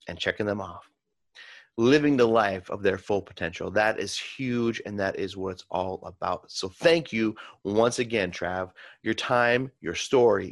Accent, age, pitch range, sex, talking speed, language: American, 30-49, 100-135 Hz, male, 175 wpm, English